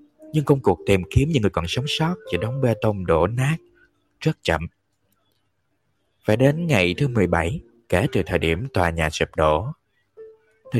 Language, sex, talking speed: Vietnamese, male, 180 wpm